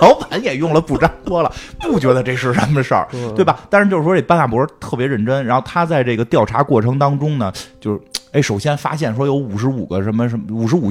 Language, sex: Chinese, male